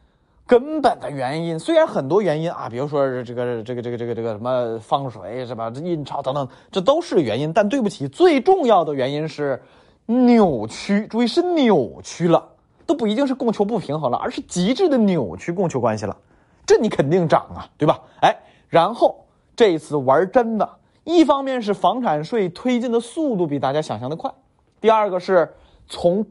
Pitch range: 145-235 Hz